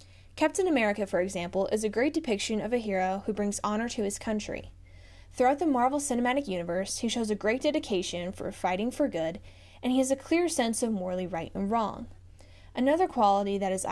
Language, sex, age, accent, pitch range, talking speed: English, female, 10-29, American, 185-250 Hz, 200 wpm